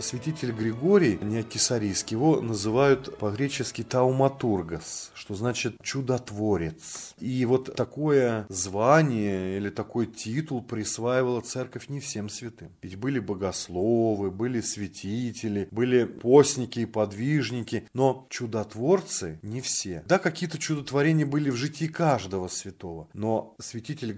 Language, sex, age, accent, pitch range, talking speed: Russian, male, 30-49, native, 100-125 Hz, 110 wpm